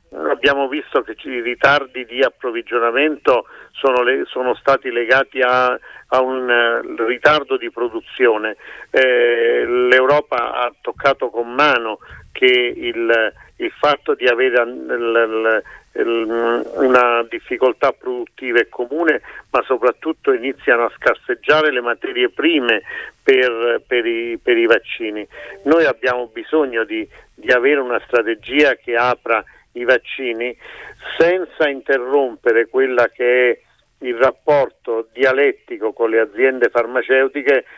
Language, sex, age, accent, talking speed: Italian, male, 50-69, native, 120 wpm